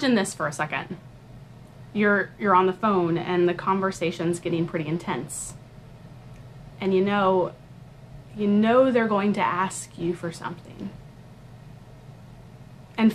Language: English